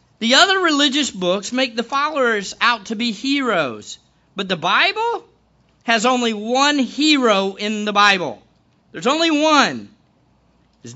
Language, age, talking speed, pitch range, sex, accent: English, 50-69, 135 wpm, 170-245 Hz, male, American